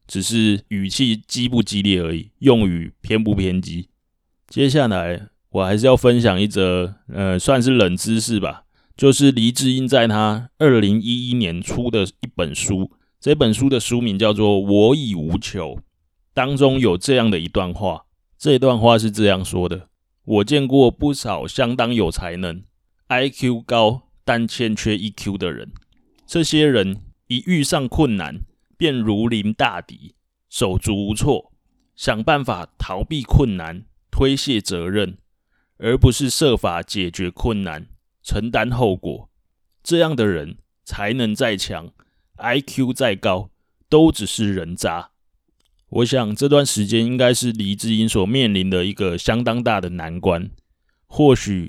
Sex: male